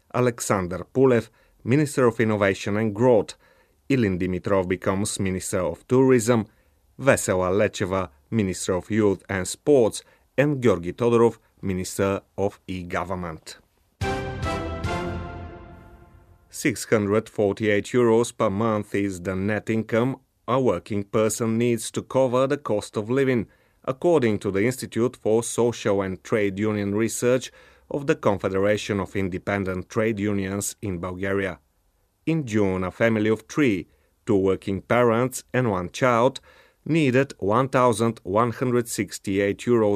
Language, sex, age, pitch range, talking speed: English, male, 30-49, 95-120 Hz, 115 wpm